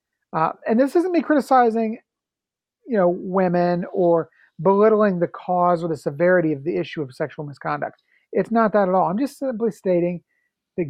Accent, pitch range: American, 170-220 Hz